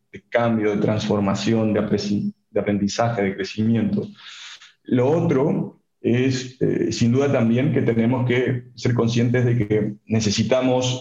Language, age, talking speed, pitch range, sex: Spanish, 40-59, 135 wpm, 110-125 Hz, male